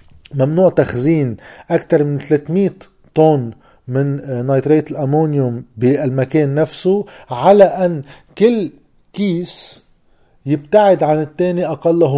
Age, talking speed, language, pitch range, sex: 40-59, 95 wpm, Arabic, 140-185 Hz, male